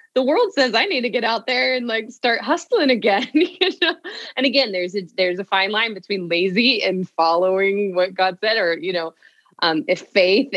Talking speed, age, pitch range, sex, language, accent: 210 wpm, 20-39, 180-255 Hz, female, English, American